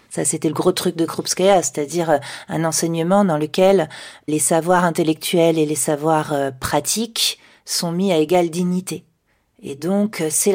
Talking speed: 155 wpm